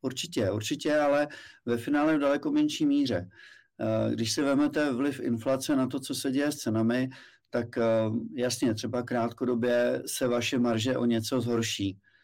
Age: 50-69